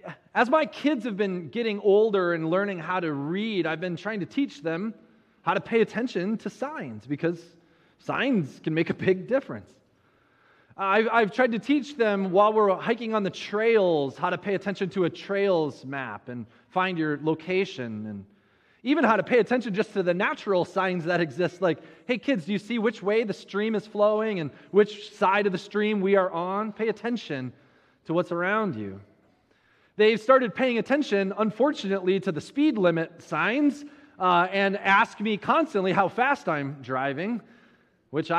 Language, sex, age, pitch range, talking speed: English, male, 20-39, 160-220 Hz, 180 wpm